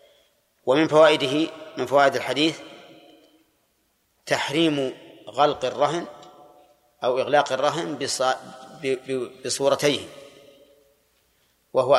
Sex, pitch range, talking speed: male, 135-155 Hz, 65 wpm